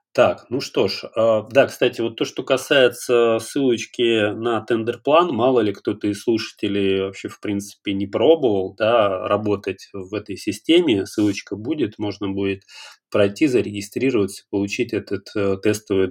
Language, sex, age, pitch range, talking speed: Russian, male, 30-49, 100-115 Hz, 140 wpm